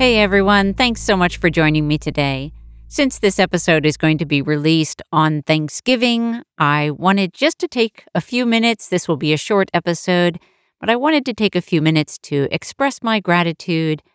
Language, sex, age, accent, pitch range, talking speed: English, female, 50-69, American, 150-205 Hz, 190 wpm